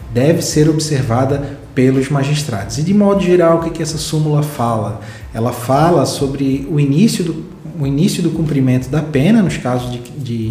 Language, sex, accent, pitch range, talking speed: Portuguese, male, Brazilian, 125-150 Hz, 160 wpm